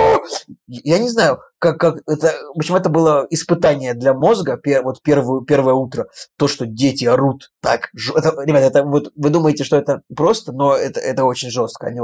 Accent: native